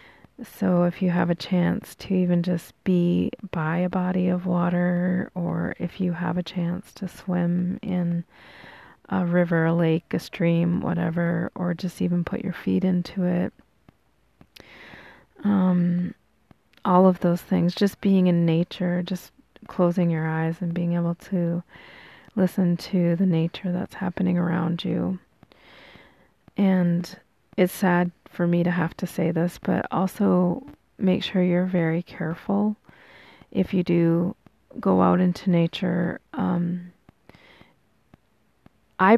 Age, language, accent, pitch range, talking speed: 30-49, English, American, 175-185 Hz, 140 wpm